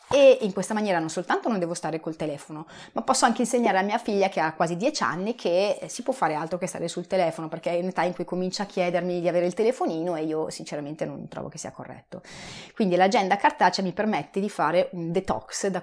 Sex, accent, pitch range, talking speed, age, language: female, native, 170-220 Hz, 240 wpm, 30-49, Italian